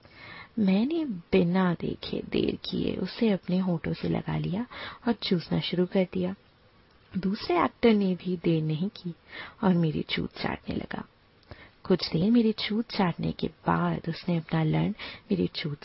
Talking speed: 150 wpm